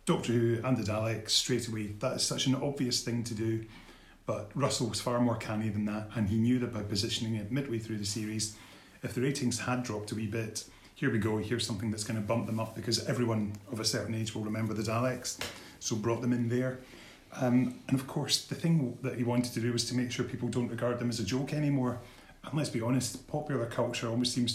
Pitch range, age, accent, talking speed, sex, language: 110-125 Hz, 30-49, British, 240 wpm, male, English